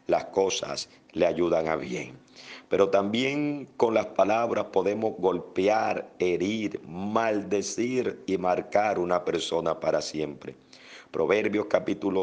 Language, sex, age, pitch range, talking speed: Spanish, male, 50-69, 90-105 Hz, 115 wpm